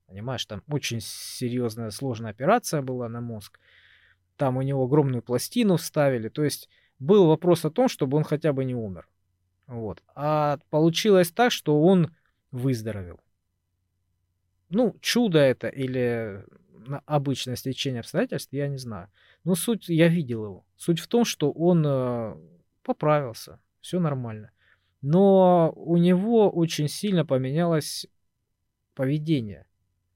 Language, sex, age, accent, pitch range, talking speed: Russian, male, 20-39, native, 110-165 Hz, 130 wpm